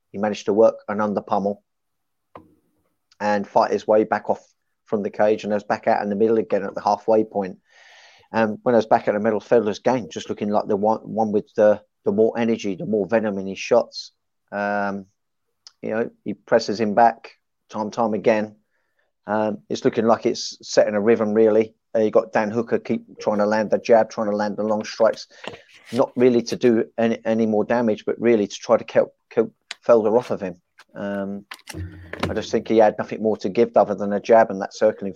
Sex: male